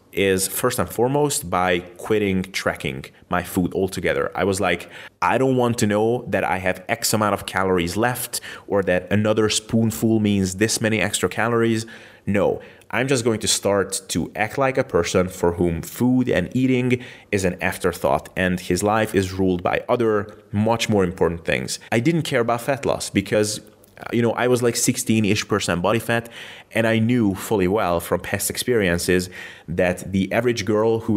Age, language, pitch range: 30-49, English, 90-115 Hz